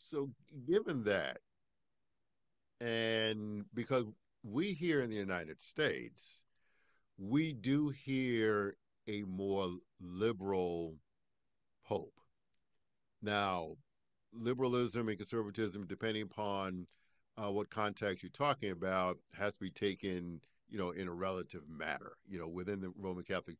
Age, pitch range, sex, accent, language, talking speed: 50-69, 90-120 Hz, male, American, English, 115 wpm